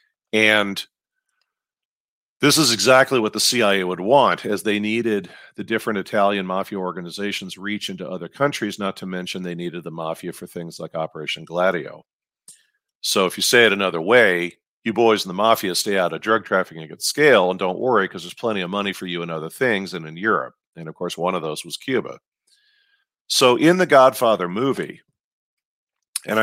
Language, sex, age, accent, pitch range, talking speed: English, male, 50-69, American, 90-110 Hz, 185 wpm